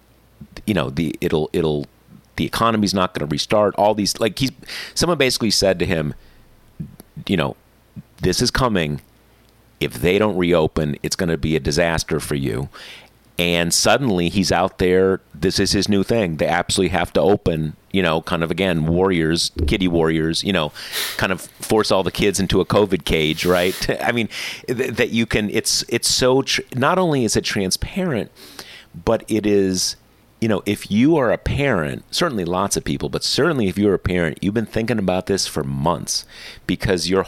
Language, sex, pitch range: English, male, 80-105 Hz